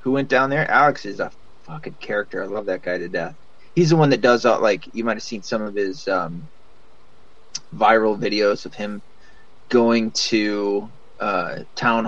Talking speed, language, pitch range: 190 wpm, English, 105-140 Hz